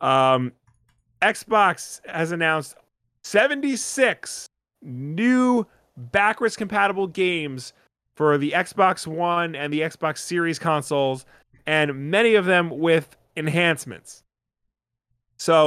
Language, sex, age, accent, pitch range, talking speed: English, male, 30-49, American, 135-195 Hz, 95 wpm